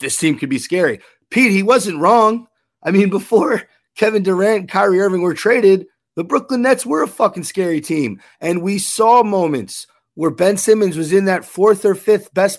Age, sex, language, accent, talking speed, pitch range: 30-49, male, English, American, 195 wpm, 150-200 Hz